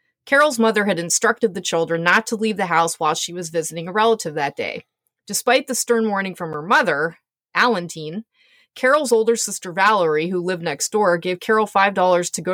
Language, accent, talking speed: English, American, 190 wpm